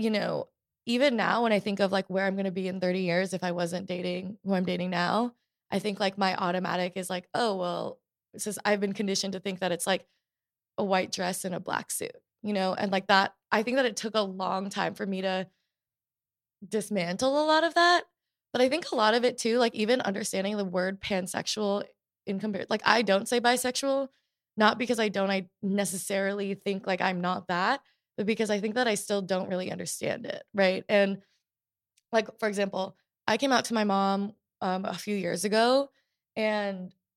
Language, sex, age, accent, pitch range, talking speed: English, female, 20-39, American, 190-225 Hz, 215 wpm